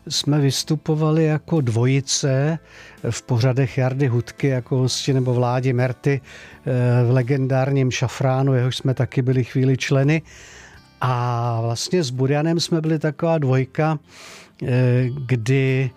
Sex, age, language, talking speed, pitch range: male, 50-69, Czech, 115 wpm, 130-155 Hz